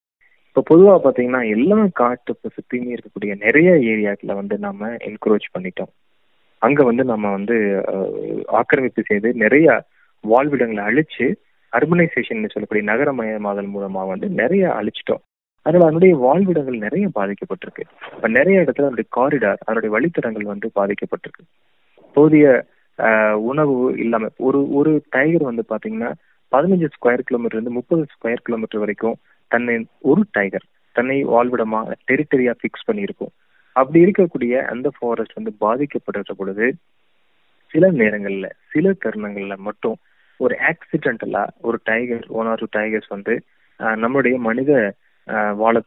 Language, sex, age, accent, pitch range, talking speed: English, male, 20-39, Indian, 105-140 Hz, 110 wpm